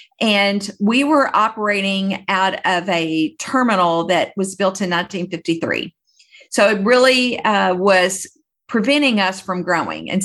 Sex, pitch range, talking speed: female, 175-210 Hz, 135 wpm